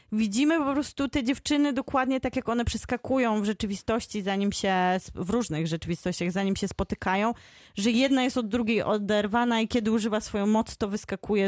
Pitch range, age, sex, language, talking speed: 195-240 Hz, 30-49, female, Polish, 175 wpm